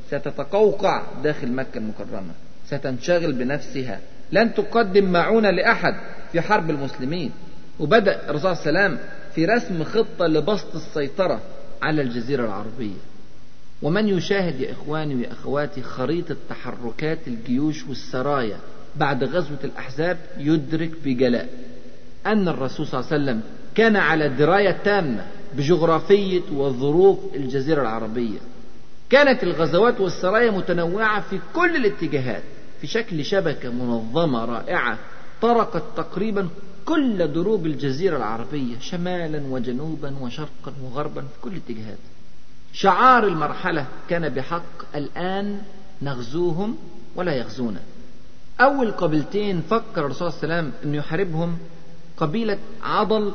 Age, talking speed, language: 50-69, 110 wpm, Arabic